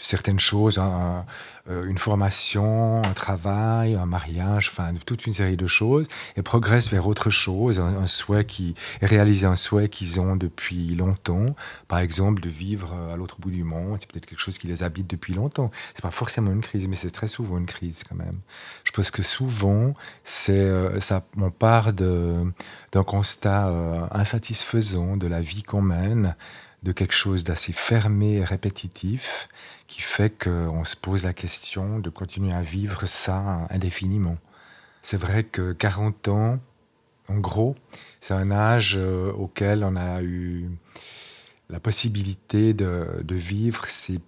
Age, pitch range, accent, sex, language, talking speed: 40-59, 90-105 Hz, French, male, French, 160 wpm